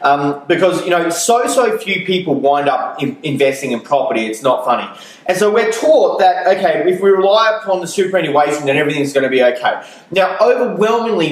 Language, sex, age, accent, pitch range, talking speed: English, male, 20-39, Australian, 145-195 Hz, 190 wpm